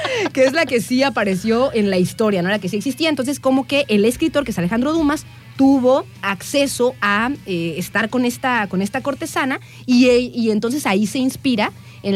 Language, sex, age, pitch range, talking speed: Spanish, female, 30-49, 195-270 Hz, 195 wpm